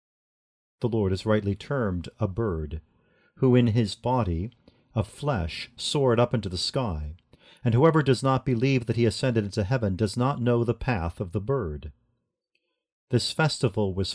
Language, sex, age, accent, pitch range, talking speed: English, male, 50-69, American, 100-130 Hz, 165 wpm